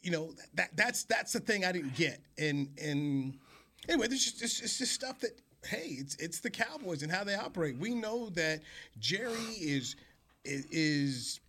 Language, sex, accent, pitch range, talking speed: English, male, American, 150-195 Hz, 185 wpm